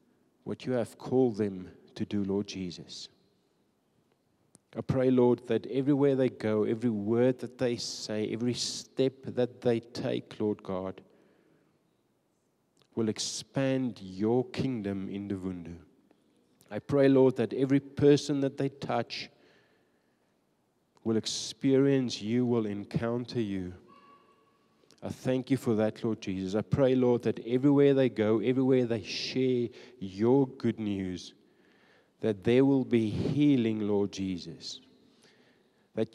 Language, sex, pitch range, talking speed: English, male, 105-130 Hz, 130 wpm